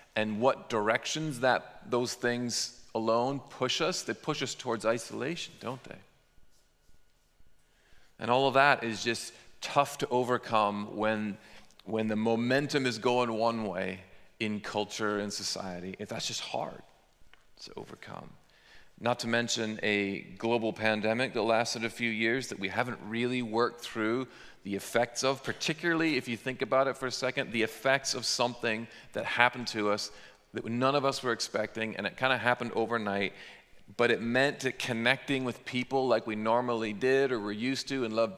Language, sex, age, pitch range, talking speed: English, male, 40-59, 105-125 Hz, 170 wpm